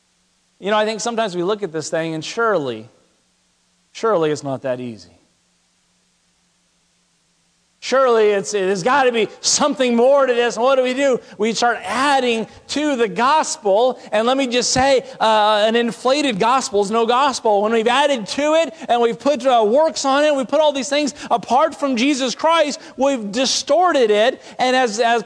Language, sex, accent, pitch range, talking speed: English, male, American, 210-265 Hz, 185 wpm